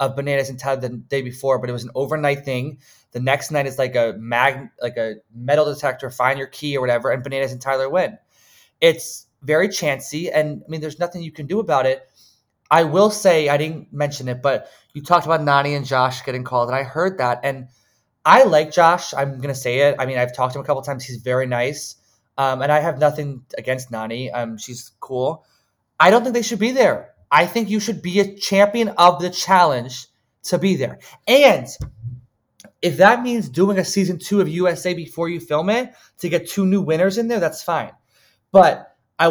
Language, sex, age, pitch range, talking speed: English, male, 20-39, 125-175 Hz, 220 wpm